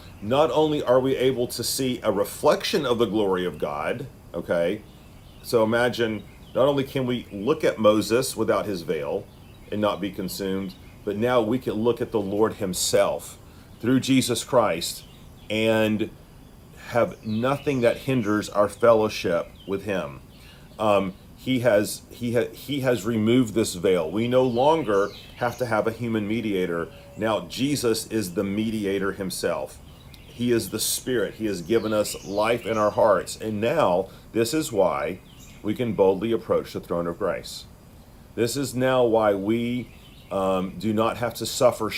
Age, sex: 40-59, male